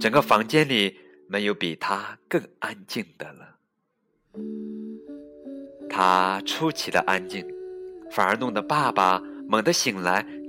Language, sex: Chinese, male